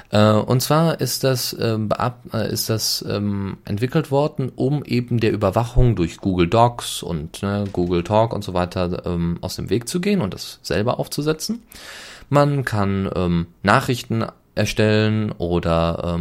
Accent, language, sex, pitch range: German, German, male, 95-125 Hz